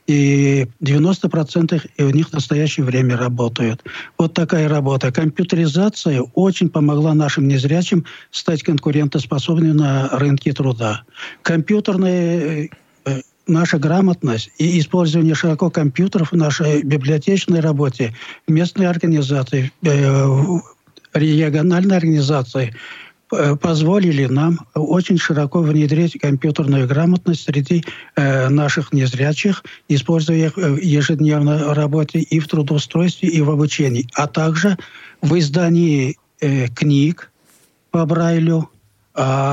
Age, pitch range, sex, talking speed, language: 60-79, 145-170 Hz, male, 100 wpm, Russian